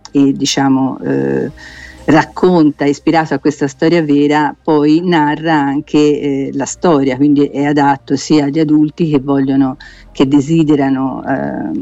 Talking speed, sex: 120 wpm, female